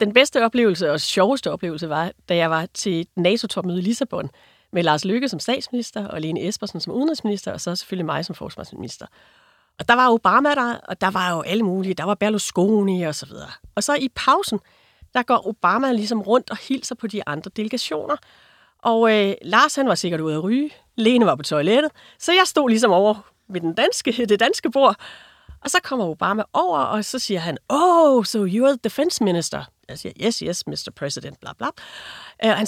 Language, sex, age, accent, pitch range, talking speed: Danish, female, 30-49, native, 190-260 Hz, 205 wpm